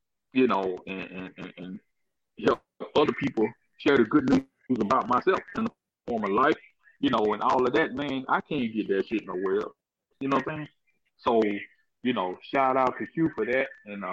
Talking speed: 210 wpm